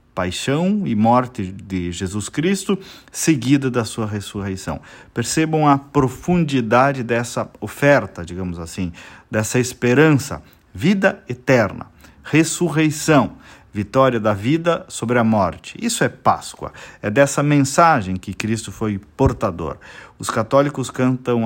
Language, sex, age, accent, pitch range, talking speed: Portuguese, male, 50-69, Brazilian, 100-140 Hz, 115 wpm